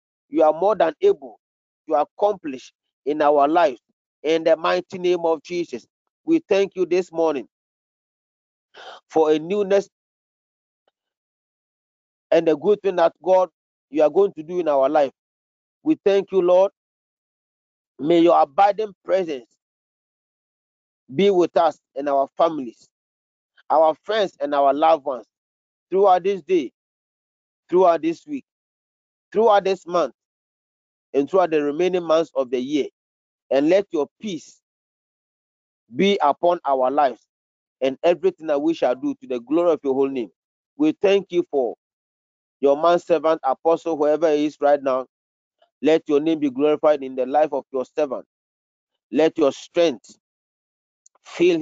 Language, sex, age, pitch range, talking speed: English, male, 40-59, 145-195 Hz, 145 wpm